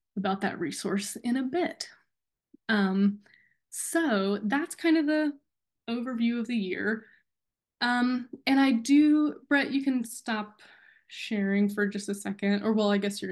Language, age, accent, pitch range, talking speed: English, 20-39, American, 200-235 Hz, 155 wpm